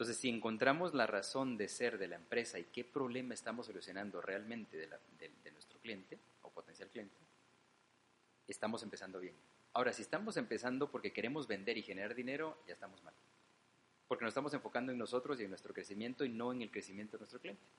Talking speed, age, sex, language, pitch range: 200 wpm, 30-49, male, Spanish, 115-140 Hz